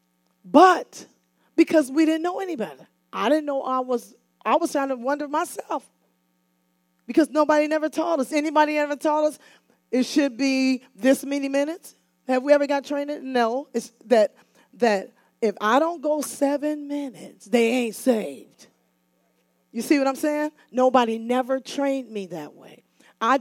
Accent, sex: American, female